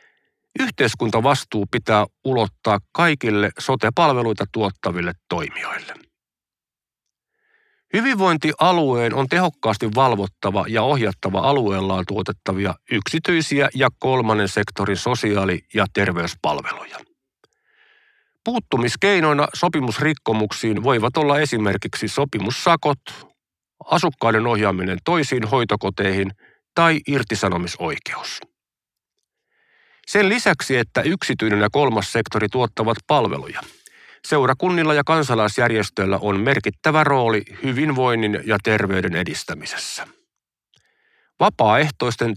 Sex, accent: male, native